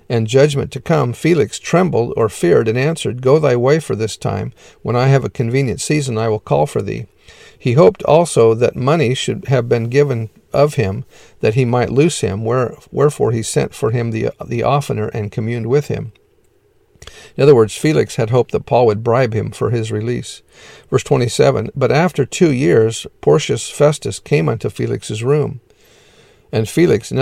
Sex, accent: male, American